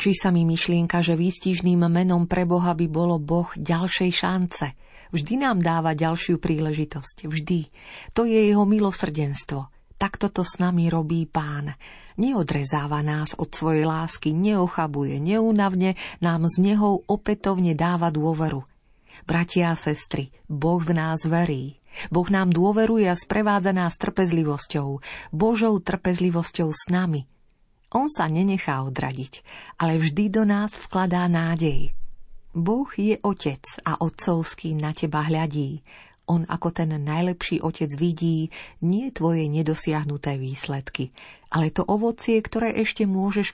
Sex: female